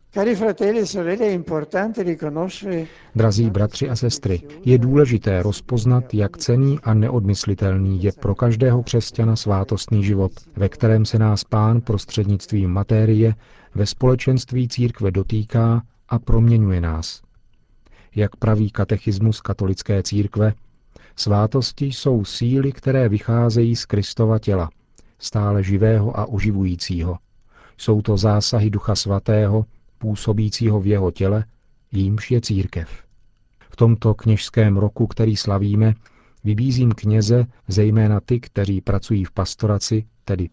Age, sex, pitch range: 50-69, male, 100-115 Hz